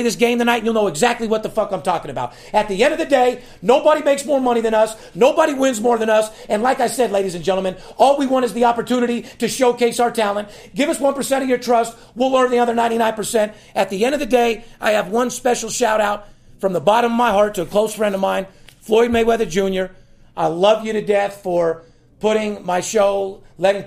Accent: American